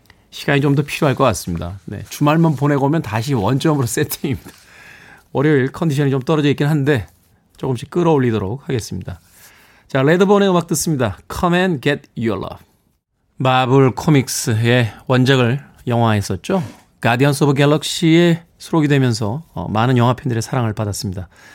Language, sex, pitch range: Korean, male, 115-165 Hz